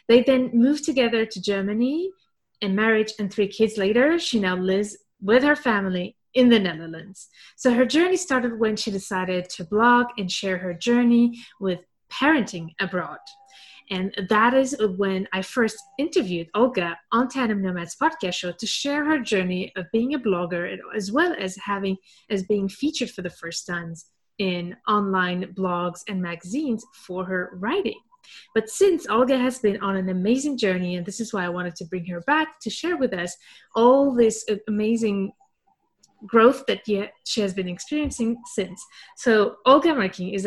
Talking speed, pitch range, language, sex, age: 170 wpm, 185-260 Hz, English, female, 30-49